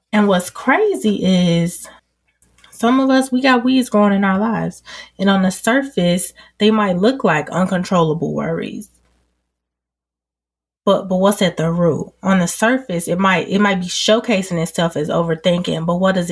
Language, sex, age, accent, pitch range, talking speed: English, female, 20-39, American, 165-200 Hz, 165 wpm